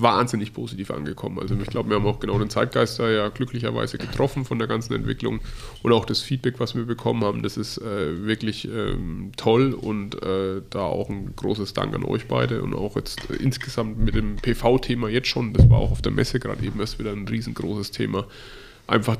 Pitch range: 110-125 Hz